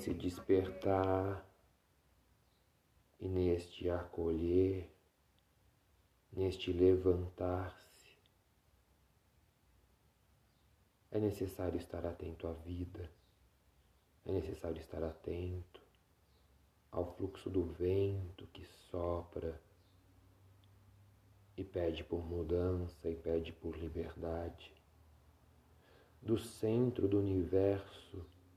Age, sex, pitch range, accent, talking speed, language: 40-59, male, 85-95 Hz, Brazilian, 75 wpm, Portuguese